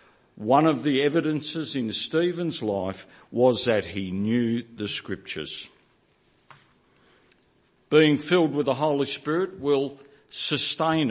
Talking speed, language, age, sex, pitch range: 115 wpm, English, 50-69, male, 120-175 Hz